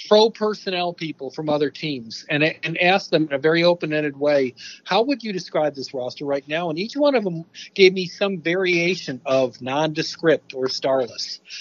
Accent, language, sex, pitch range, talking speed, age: American, English, male, 150-190 Hz, 185 wpm, 50-69